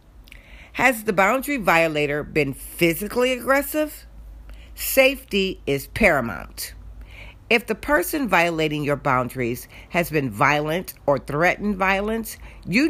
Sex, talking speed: female, 105 wpm